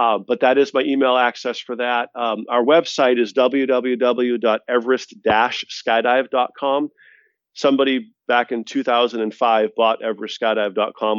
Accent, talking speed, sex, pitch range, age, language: American, 105 wpm, male, 115-135 Hz, 40-59, English